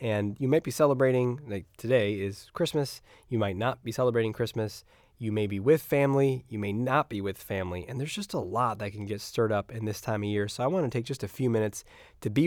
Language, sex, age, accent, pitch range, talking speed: English, male, 20-39, American, 100-130 Hz, 250 wpm